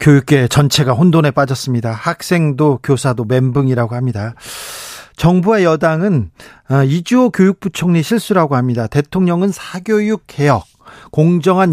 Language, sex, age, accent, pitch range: Korean, male, 40-59, native, 140-200 Hz